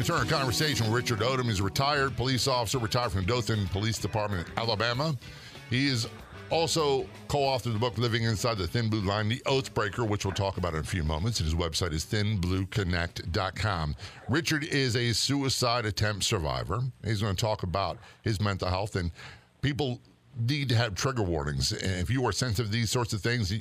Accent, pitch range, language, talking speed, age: American, 105-135 Hz, English, 195 wpm, 50-69